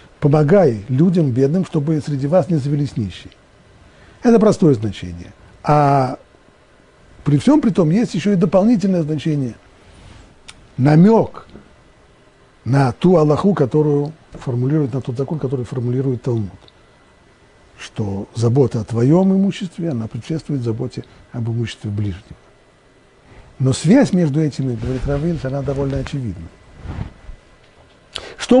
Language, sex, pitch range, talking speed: Russian, male, 125-180 Hz, 115 wpm